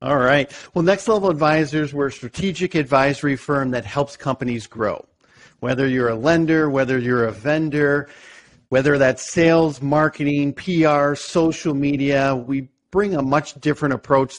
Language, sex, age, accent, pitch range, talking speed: English, male, 50-69, American, 130-150 Hz, 150 wpm